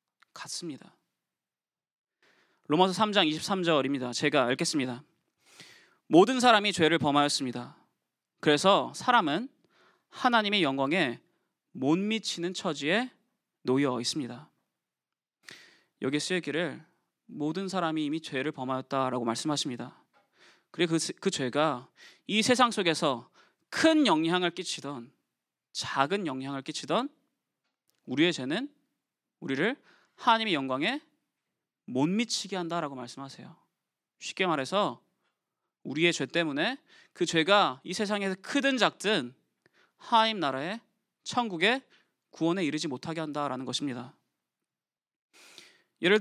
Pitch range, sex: 150-225 Hz, male